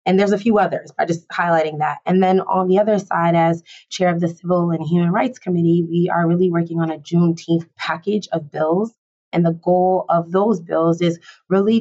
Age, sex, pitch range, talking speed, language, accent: 20-39, female, 165-185 Hz, 215 wpm, English, American